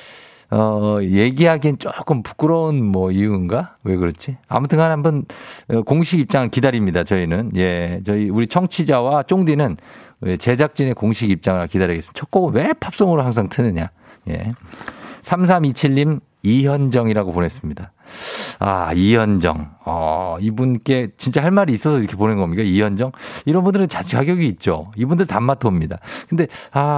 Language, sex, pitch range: Korean, male, 100-150 Hz